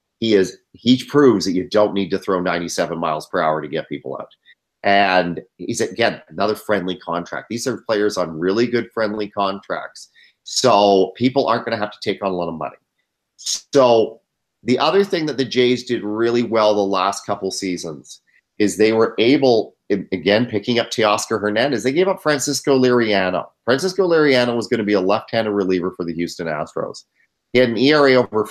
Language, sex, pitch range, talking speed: English, male, 95-125 Hz, 190 wpm